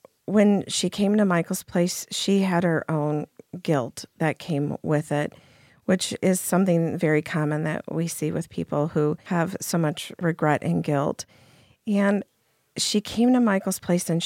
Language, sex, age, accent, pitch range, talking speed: English, female, 50-69, American, 155-190 Hz, 165 wpm